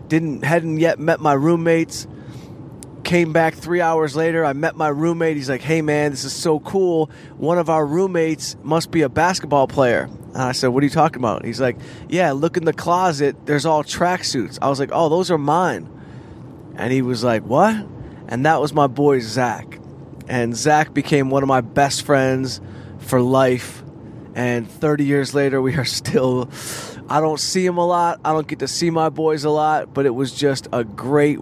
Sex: male